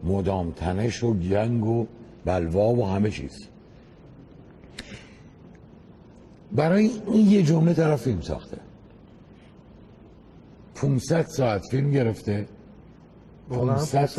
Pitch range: 110-145 Hz